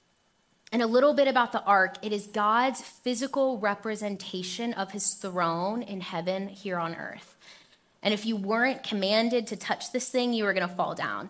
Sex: female